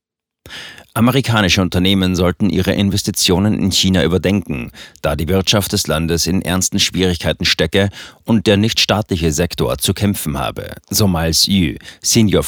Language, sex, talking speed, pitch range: German, male, 135 wpm, 85-100 Hz